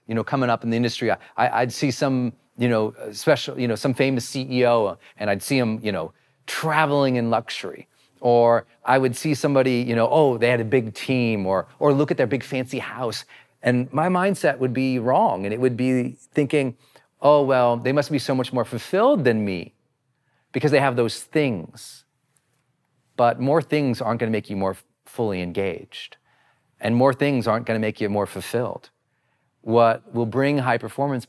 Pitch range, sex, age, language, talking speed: 115-145 Hz, male, 40-59, English, 190 wpm